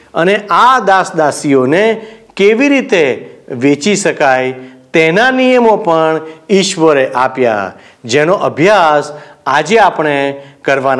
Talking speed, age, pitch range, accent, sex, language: 75 wpm, 50-69, 150-230 Hz, native, male, Gujarati